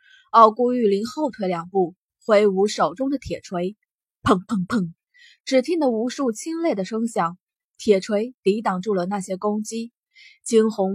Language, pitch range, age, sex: Chinese, 185-250 Hz, 20-39, female